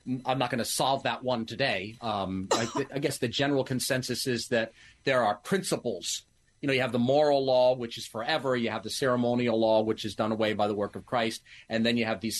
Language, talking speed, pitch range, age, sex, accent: English, 235 wpm, 110-145 Hz, 40-59, male, American